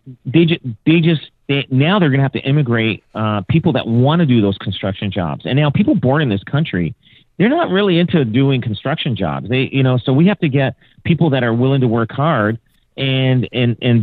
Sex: male